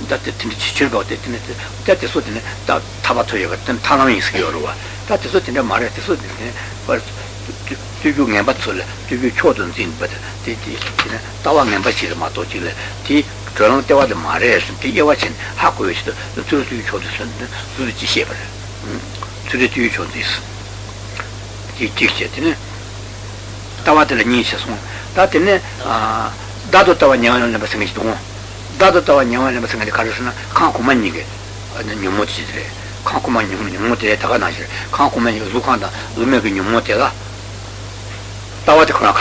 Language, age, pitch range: Italian, 60-79, 100-110 Hz